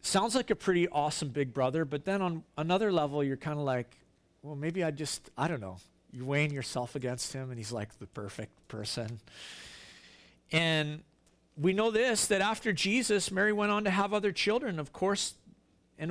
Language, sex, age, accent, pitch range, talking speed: English, male, 50-69, American, 120-190 Hz, 190 wpm